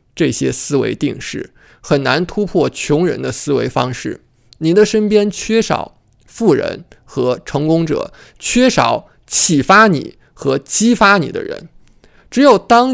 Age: 20-39